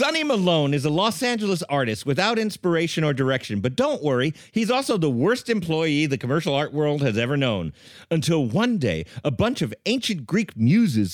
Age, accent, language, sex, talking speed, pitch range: 40-59, American, English, male, 190 wpm, 150-215 Hz